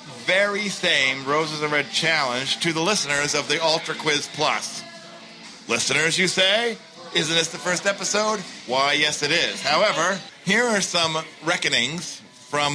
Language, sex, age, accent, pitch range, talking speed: English, male, 50-69, American, 145-195 Hz, 150 wpm